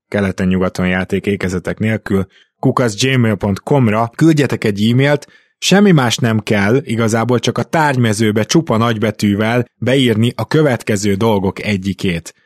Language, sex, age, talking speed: Hungarian, male, 20-39, 110 wpm